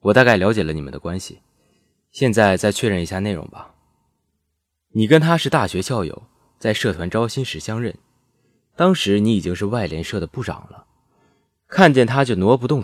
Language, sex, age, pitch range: Chinese, male, 20-39, 85-135 Hz